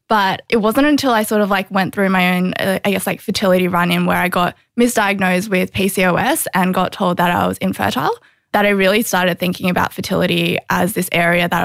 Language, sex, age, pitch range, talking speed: English, female, 10-29, 180-205 Hz, 215 wpm